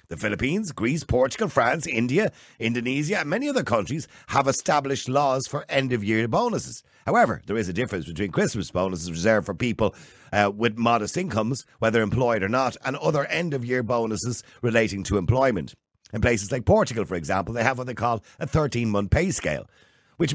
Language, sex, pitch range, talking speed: English, male, 115-165 Hz, 175 wpm